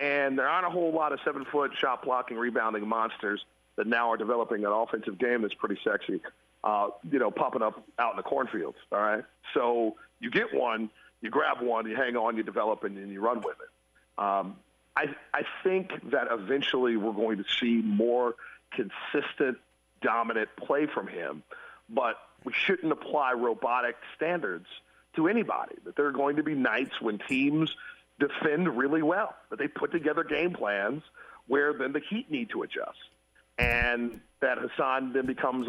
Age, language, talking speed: 40-59, English, 175 wpm